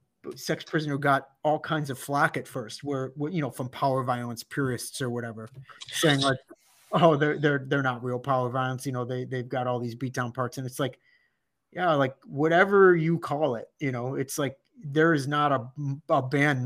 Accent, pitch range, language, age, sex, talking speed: American, 130-155 Hz, English, 30-49, male, 210 wpm